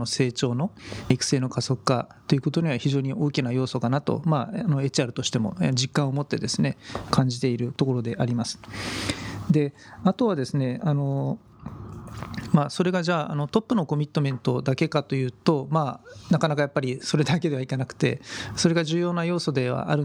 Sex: male